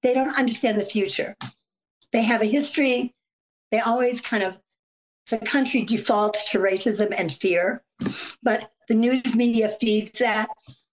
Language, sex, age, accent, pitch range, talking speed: English, female, 60-79, American, 210-250 Hz, 145 wpm